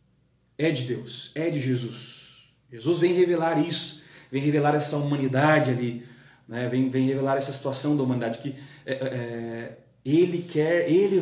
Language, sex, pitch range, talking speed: Portuguese, male, 125-150 Hz, 140 wpm